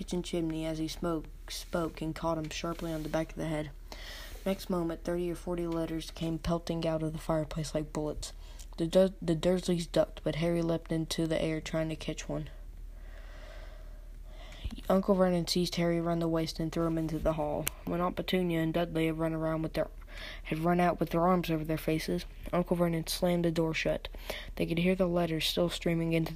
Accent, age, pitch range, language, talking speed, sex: American, 20-39, 160-180 Hz, English, 205 wpm, female